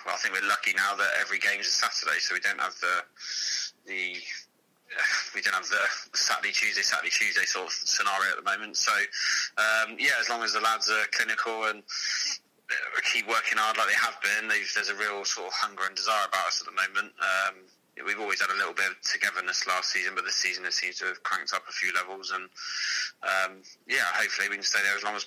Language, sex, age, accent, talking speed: English, male, 20-39, British, 230 wpm